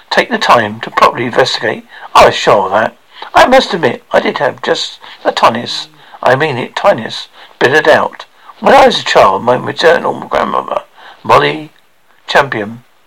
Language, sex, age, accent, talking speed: English, male, 60-79, British, 170 wpm